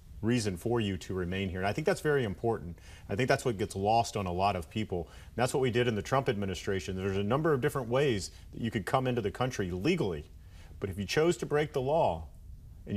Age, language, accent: 40-59, English, American